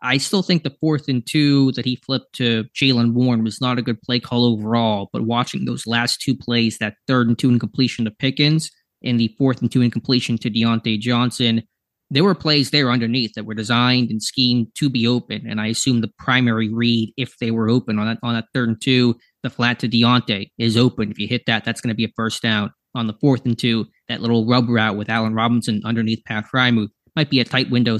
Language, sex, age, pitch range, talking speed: English, male, 20-39, 115-130 Hz, 240 wpm